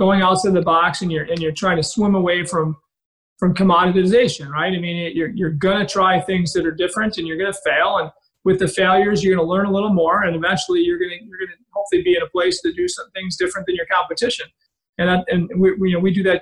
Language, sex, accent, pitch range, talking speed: English, male, American, 175-195 Hz, 250 wpm